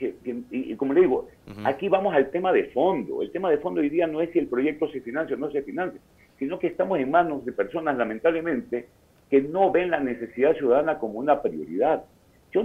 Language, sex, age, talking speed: Spanish, male, 50-69, 215 wpm